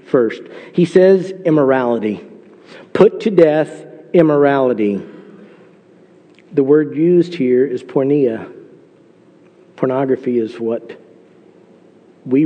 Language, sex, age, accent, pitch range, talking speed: English, male, 50-69, American, 140-175 Hz, 85 wpm